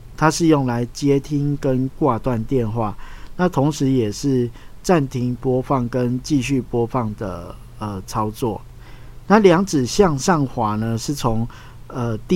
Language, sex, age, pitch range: Chinese, male, 50-69, 110-140 Hz